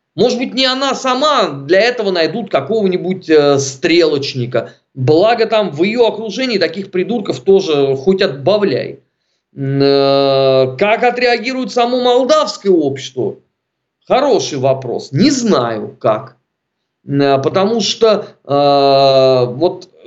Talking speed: 100 wpm